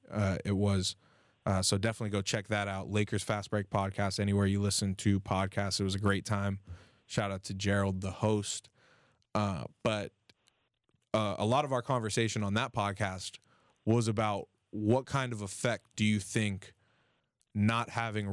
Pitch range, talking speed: 100-115 Hz, 170 wpm